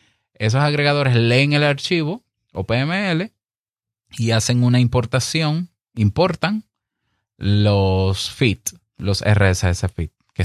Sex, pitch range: male, 95-125 Hz